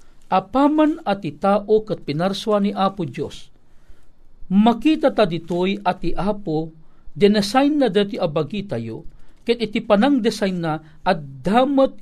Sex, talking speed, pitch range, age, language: male, 125 wpm, 145-200 Hz, 50-69, Filipino